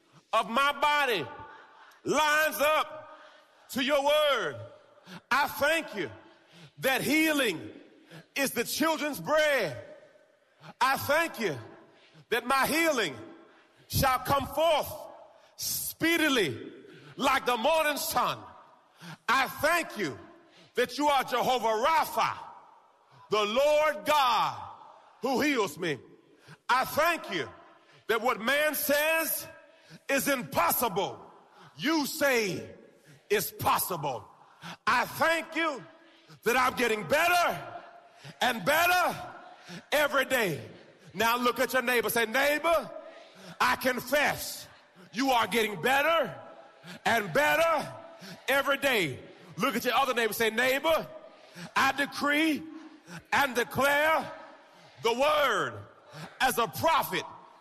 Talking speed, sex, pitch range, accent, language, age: 105 wpm, male, 255-315 Hz, American, English, 40-59